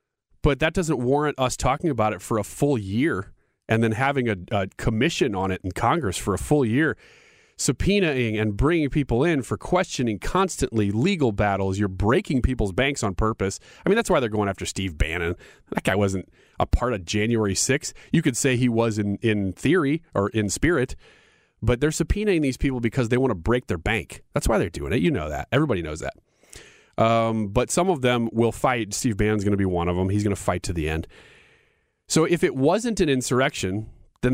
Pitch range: 95-130 Hz